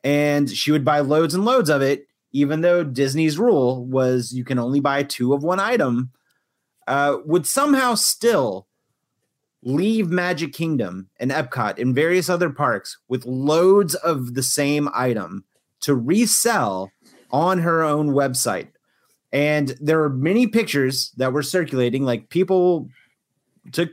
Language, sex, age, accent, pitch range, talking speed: English, male, 30-49, American, 130-175 Hz, 145 wpm